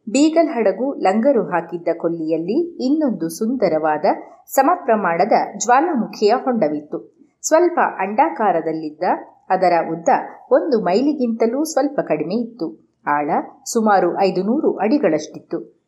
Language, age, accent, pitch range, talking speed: Kannada, 30-49, native, 170-265 Hz, 85 wpm